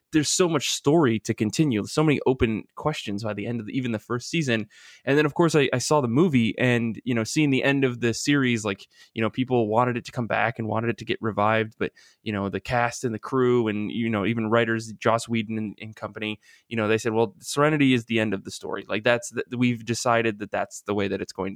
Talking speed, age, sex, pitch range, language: 260 wpm, 20-39, male, 110-135 Hz, English